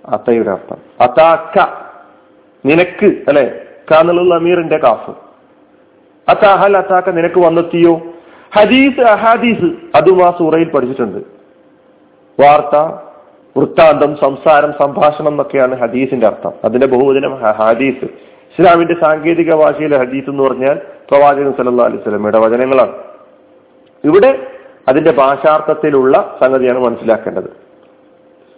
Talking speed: 80 wpm